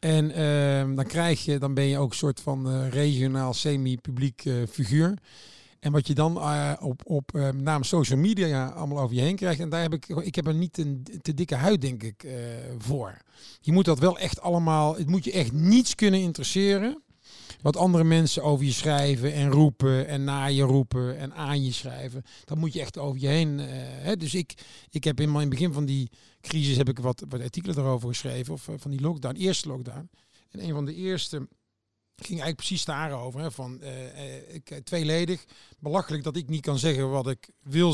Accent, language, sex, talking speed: Dutch, Dutch, male, 205 wpm